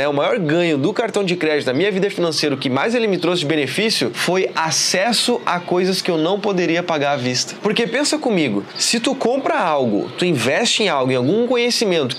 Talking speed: 215 wpm